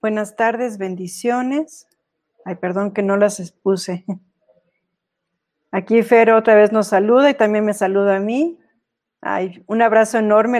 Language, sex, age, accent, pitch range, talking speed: Spanish, female, 40-59, Mexican, 190-230 Hz, 140 wpm